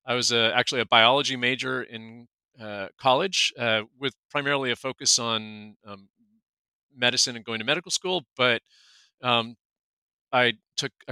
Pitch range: 105-130 Hz